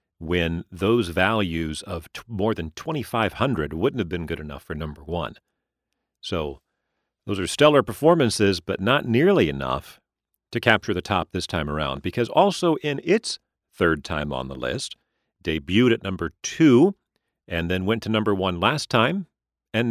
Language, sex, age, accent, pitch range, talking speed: English, male, 50-69, American, 85-120 Hz, 160 wpm